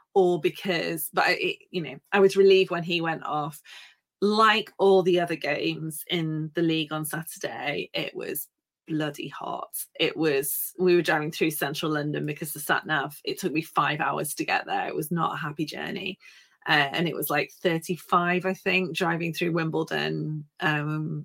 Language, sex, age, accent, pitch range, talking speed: English, female, 30-49, British, 160-195 Hz, 185 wpm